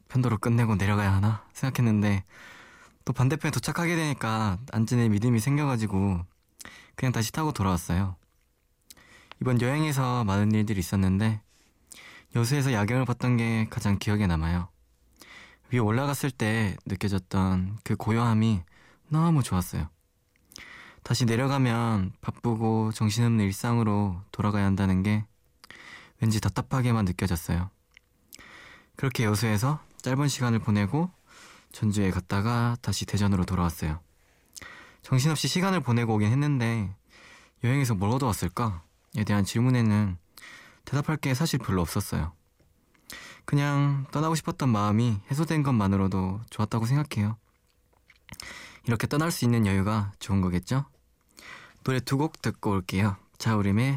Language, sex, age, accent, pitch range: Korean, male, 20-39, native, 95-125 Hz